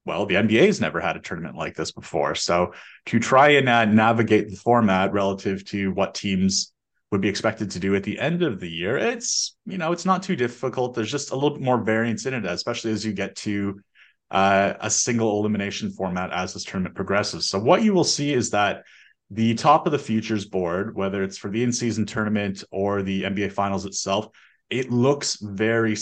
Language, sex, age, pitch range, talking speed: English, male, 30-49, 95-120 Hz, 210 wpm